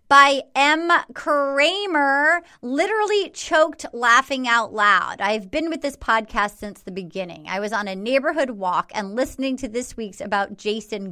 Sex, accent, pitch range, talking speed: female, American, 200-280 Hz, 155 wpm